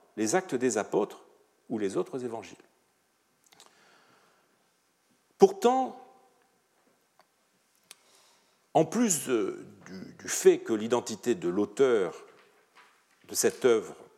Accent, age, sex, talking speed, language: French, 50-69, male, 95 wpm, French